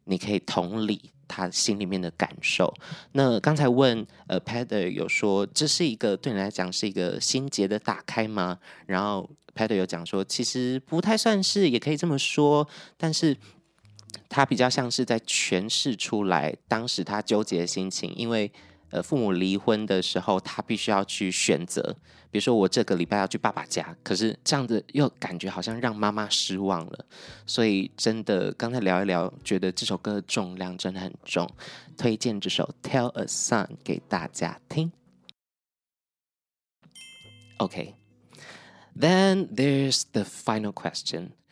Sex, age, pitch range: male, 20-39, 95-135 Hz